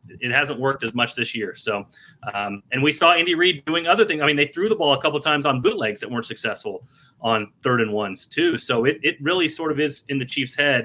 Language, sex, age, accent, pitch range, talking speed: English, male, 30-49, American, 120-155 Hz, 265 wpm